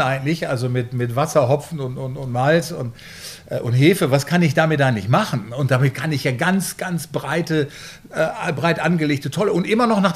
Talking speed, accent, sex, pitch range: 220 wpm, German, male, 140-180 Hz